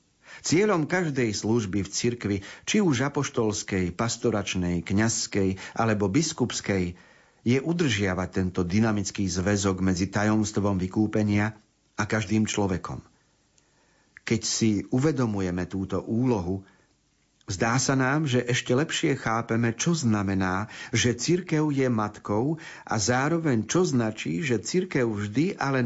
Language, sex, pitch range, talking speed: Slovak, male, 105-130 Hz, 115 wpm